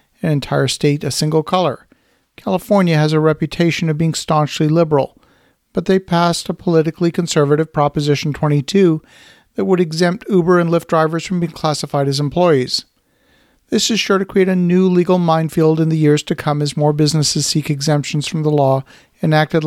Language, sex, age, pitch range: English, male, 50-69, 150-185 Hz